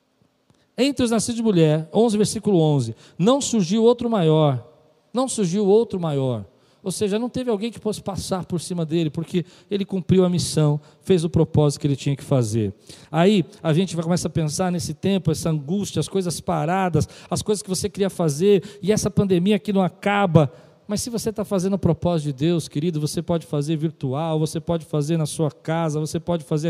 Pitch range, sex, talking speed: 155-195 Hz, male, 200 wpm